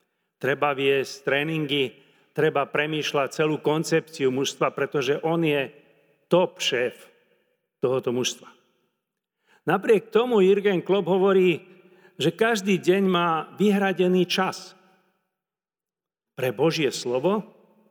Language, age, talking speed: Slovak, 40-59, 95 wpm